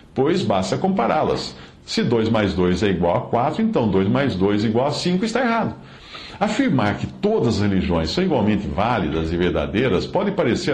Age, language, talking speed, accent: 60-79, Portuguese, 185 wpm, Brazilian